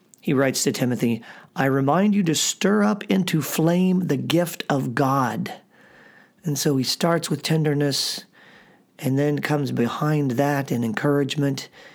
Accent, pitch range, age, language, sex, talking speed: American, 130-160 Hz, 40-59, English, male, 145 wpm